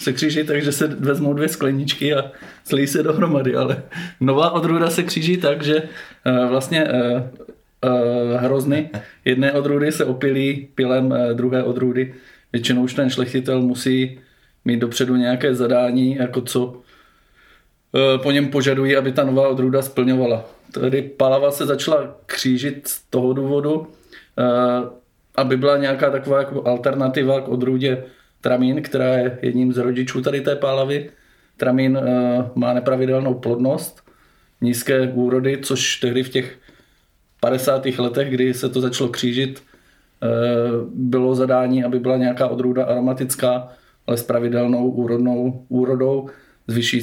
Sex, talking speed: male, 135 wpm